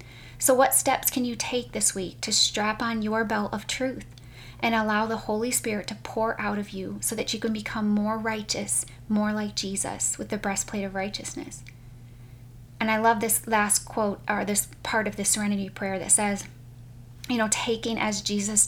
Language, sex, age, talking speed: English, female, 20-39, 195 wpm